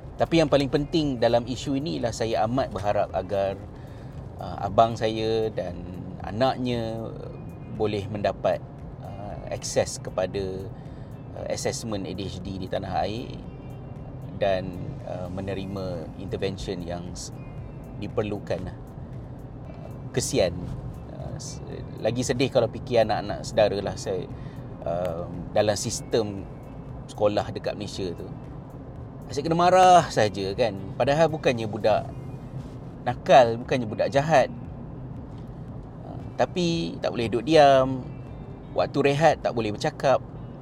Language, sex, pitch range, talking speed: Malay, male, 110-140 Hz, 95 wpm